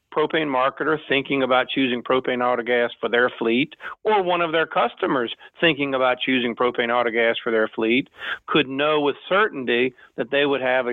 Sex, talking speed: male, 175 wpm